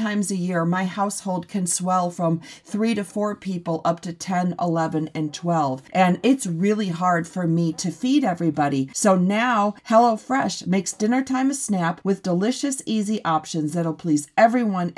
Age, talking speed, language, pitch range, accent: 40-59, 170 wpm, English, 175-230 Hz, American